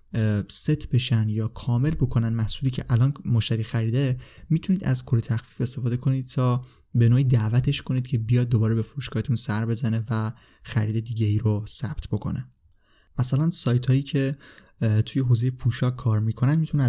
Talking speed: 155 wpm